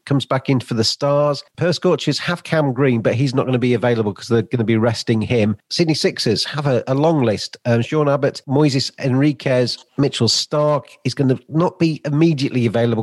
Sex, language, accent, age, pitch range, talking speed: male, English, British, 40-59, 105-140 Hz, 210 wpm